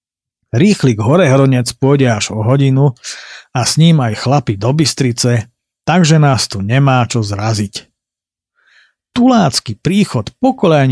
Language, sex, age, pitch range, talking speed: Slovak, male, 50-69, 120-155 Hz, 125 wpm